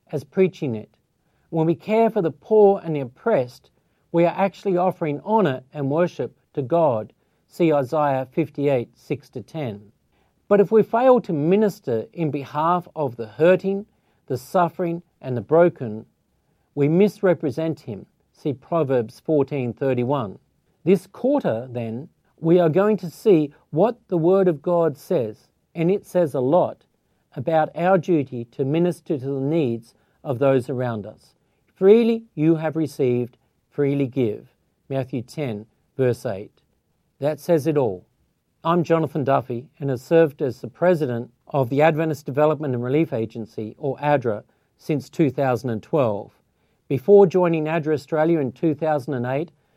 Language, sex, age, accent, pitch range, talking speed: English, male, 50-69, Australian, 130-170 Hz, 145 wpm